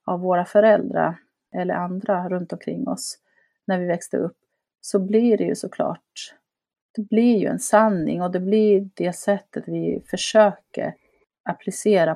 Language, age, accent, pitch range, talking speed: Swedish, 30-49, native, 165-205 Hz, 150 wpm